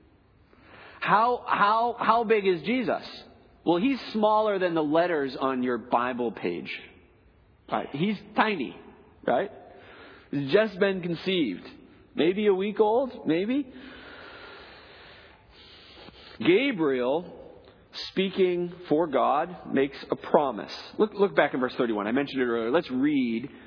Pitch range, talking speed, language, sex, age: 175-245 Hz, 120 wpm, English, male, 40-59